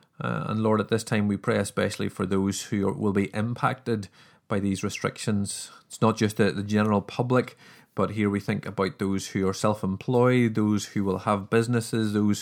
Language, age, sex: English, 30-49, male